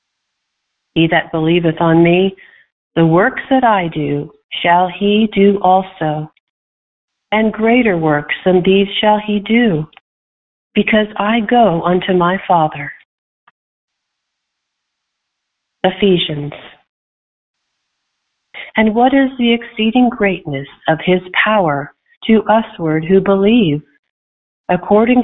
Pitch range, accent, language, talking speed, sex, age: 155-205 Hz, American, English, 100 wpm, female, 50-69